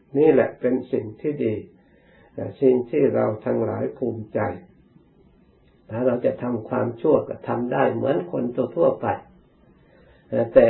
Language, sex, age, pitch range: Thai, male, 60-79, 110-135 Hz